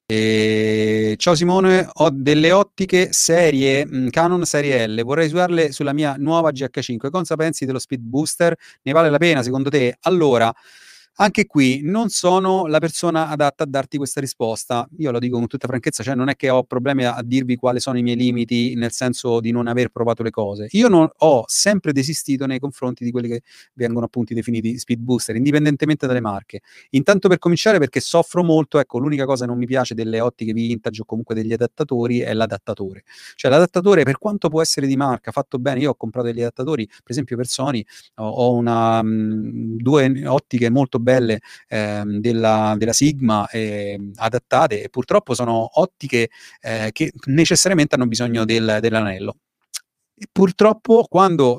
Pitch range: 115-155 Hz